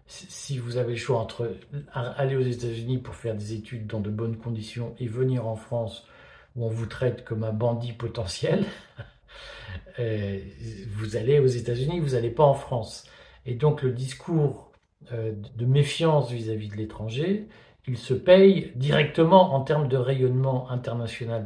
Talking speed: 160 wpm